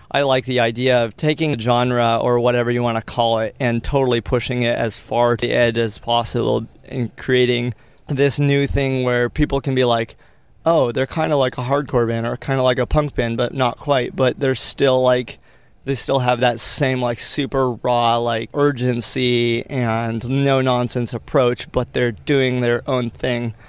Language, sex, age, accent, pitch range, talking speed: English, male, 30-49, American, 120-135 Hz, 195 wpm